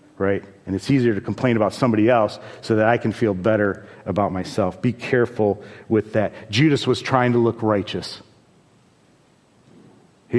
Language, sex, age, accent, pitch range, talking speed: English, male, 50-69, American, 100-125 Hz, 160 wpm